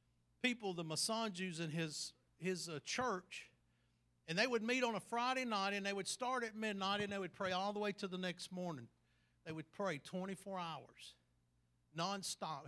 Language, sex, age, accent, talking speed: English, male, 50-69, American, 185 wpm